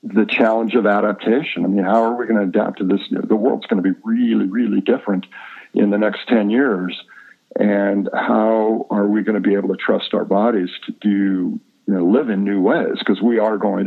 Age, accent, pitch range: 50-69, American, 100-120 Hz